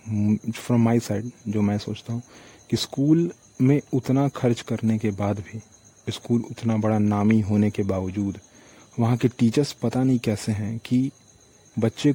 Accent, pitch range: Indian, 105-125 Hz